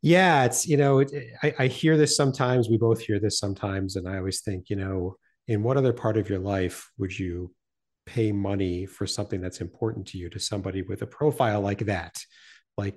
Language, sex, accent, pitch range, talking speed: English, male, American, 95-115 Hz, 215 wpm